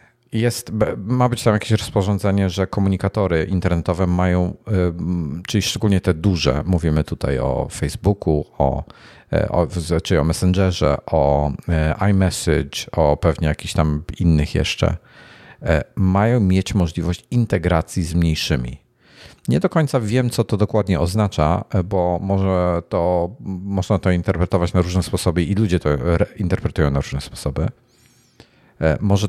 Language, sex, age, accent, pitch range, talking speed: Polish, male, 50-69, native, 80-100 Hz, 125 wpm